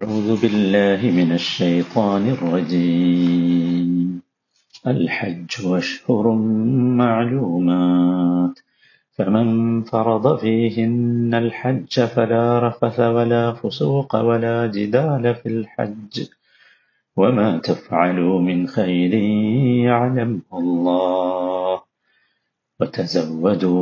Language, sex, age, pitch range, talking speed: Malayalam, male, 50-69, 90-115 Hz, 70 wpm